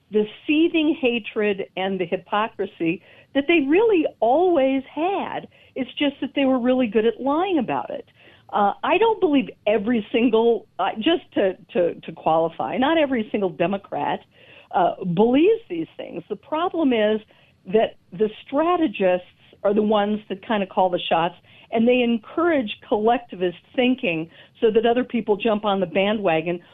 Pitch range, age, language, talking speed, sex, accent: 200-275 Hz, 50-69, English, 155 wpm, female, American